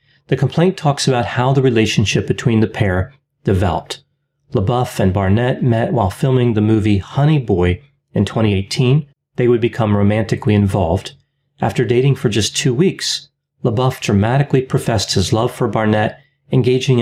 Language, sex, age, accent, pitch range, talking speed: English, male, 30-49, American, 110-140 Hz, 150 wpm